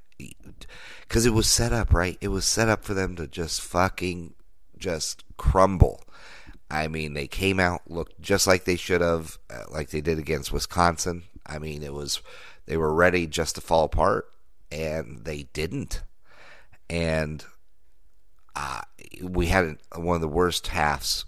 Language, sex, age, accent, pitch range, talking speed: English, male, 30-49, American, 80-95 Hz, 160 wpm